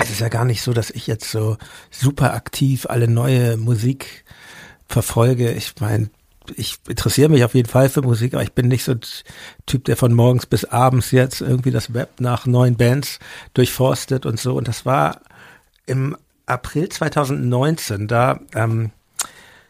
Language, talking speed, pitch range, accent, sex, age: German, 165 wpm, 120-150 Hz, German, male, 60-79